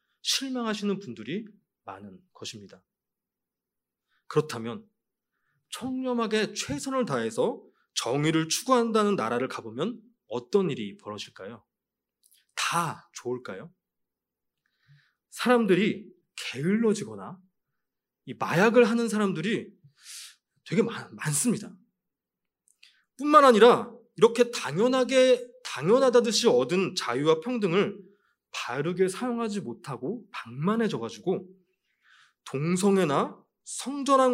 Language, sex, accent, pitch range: Korean, male, native, 175-235 Hz